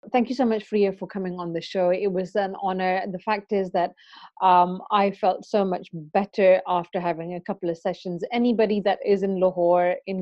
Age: 30-49